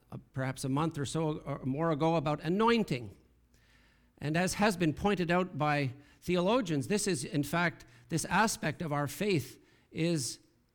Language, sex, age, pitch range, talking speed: English, male, 50-69, 140-180 Hz, 160 wpm